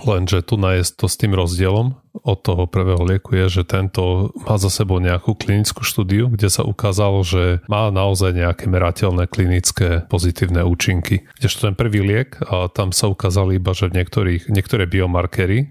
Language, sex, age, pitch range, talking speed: Slovak, male, 30-49, 90-105 Hz, 170 wpm